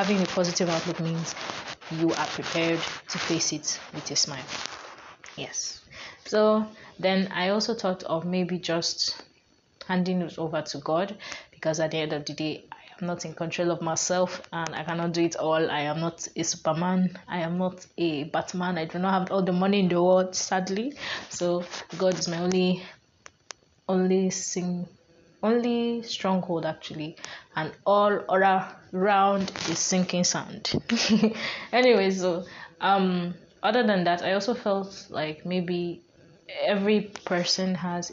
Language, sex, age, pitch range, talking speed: English, female, 20-39, 165-185 Hz, 155 wpm